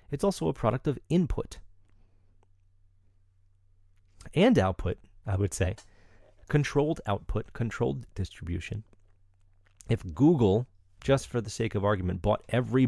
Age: 30-49